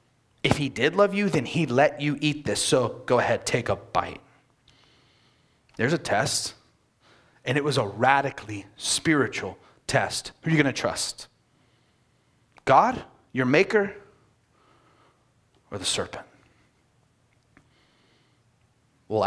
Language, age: English, 30-49